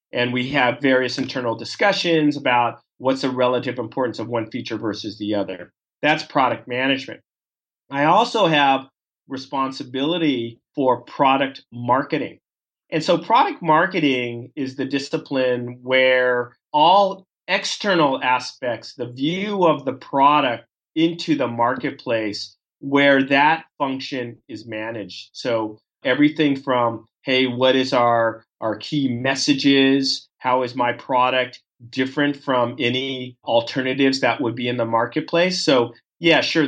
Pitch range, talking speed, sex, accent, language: 120-145 Hz, 130 wpm, male, American, English